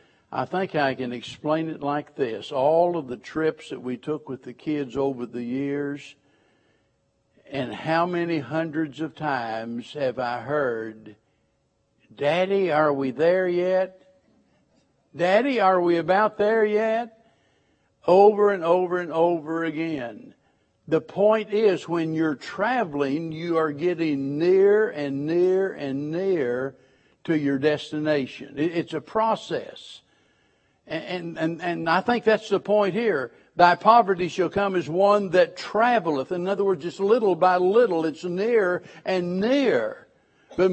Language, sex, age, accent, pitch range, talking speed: English, male, 60-79, American, 150-195 Hz, 140 wpm